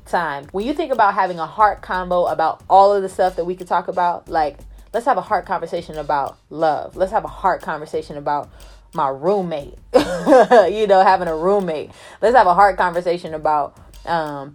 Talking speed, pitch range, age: 195 wpm, 160-200 Hz, 20-39